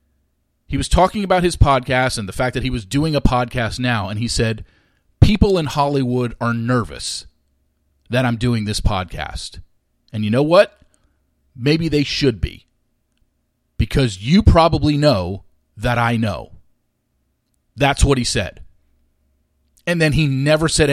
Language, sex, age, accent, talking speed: English, male, 40-59, American, 150 wpm